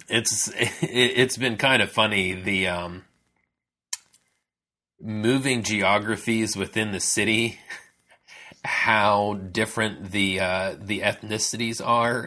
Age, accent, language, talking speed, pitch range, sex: 30-49, American, English, 100 wpm, 95-120 Hz, male